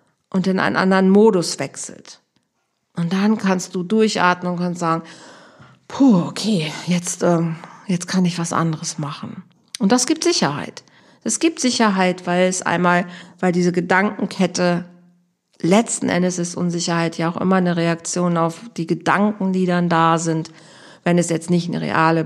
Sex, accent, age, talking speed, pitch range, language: female, German, 50-69, 160 wpm, 160-185 Hz, German